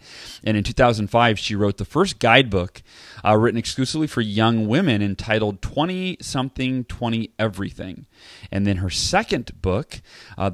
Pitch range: 100-120 Hz